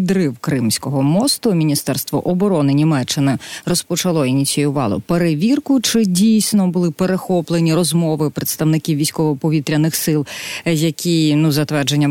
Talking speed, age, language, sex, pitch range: 100 wpm, 30-49, Ukrainian, female, 150-185 Hz